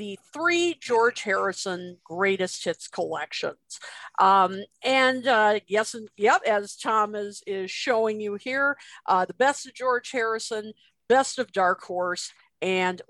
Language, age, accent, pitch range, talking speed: English, 50-69, American, 175-245 Hz, 140 wpm